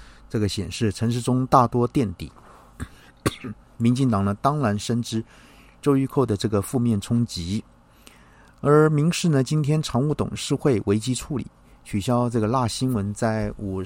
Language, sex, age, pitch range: Chinese, male, 50-69, 100-130 Hz